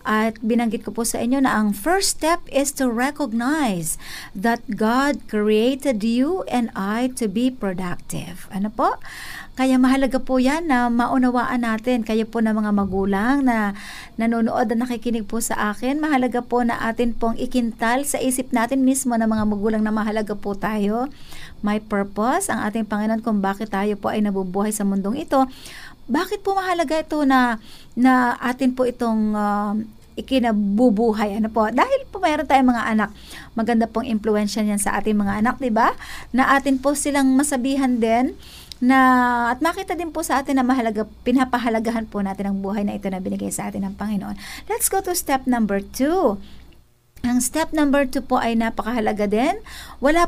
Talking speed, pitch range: 175 wpm, 215-270 Hz